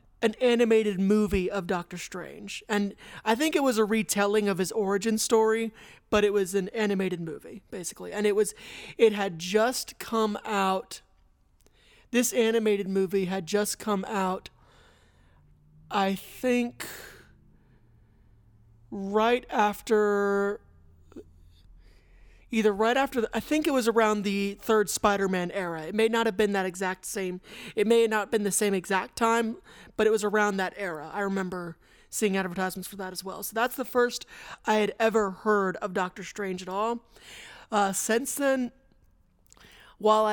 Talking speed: 155 wpm